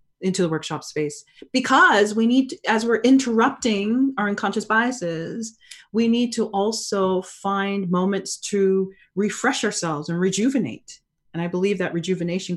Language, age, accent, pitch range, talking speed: English, 30-49, American, 175-225 Hz, 140 wpm